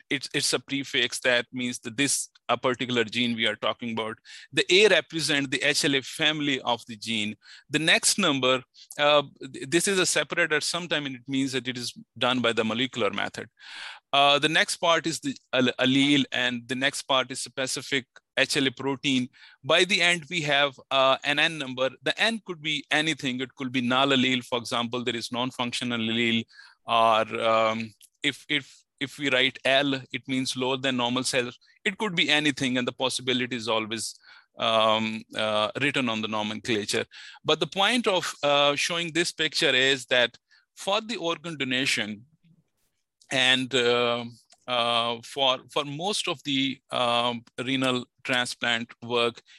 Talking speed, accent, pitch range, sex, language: 170 wpm, Indian, 120-145 Hz, male, English